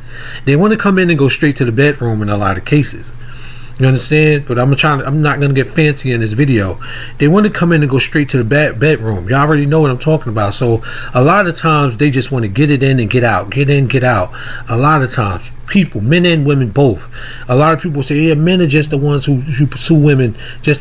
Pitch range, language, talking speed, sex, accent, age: 120-150 Hz, English, 270 wpm, male, American, 30-49